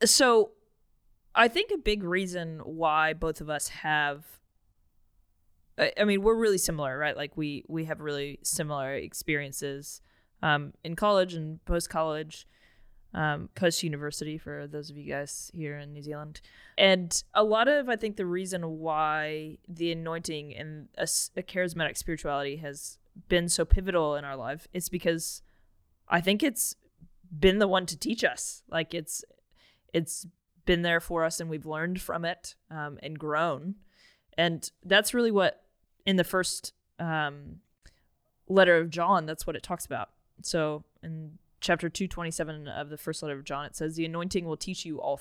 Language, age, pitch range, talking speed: English, 20-39, 150-180 Hz, 165 wpm